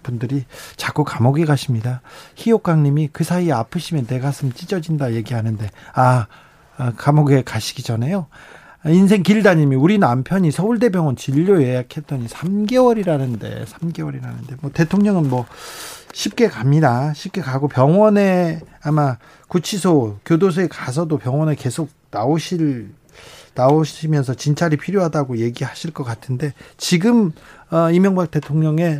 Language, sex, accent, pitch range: Korean, male, native, 135-175 Hz